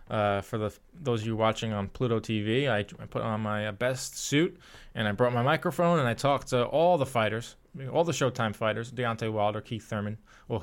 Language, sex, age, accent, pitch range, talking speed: English, male, 20-39, American, 110-135 Hz, 215 wpm